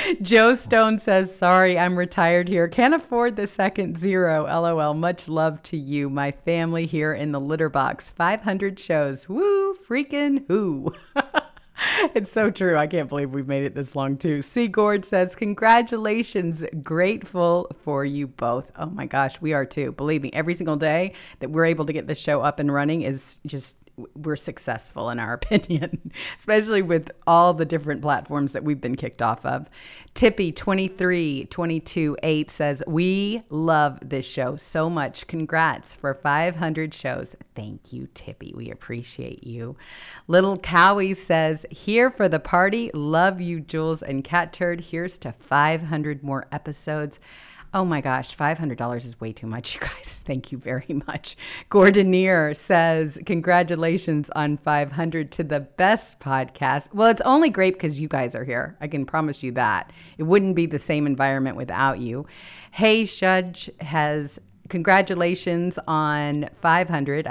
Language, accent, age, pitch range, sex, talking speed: English, American, 40-59, 145-185 Hz, female, 155 wpm